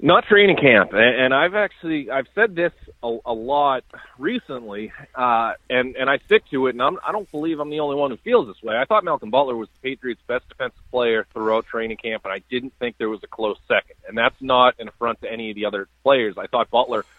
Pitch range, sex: 115-145 Hz, male